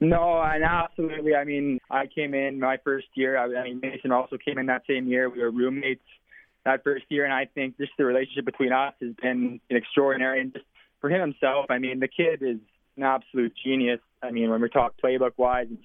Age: 20-39